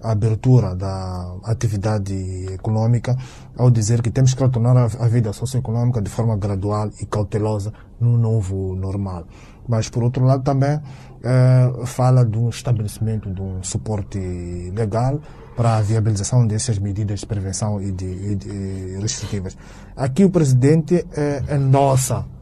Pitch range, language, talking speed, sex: 100-130 Hz, Portuguese, 140 wpm, male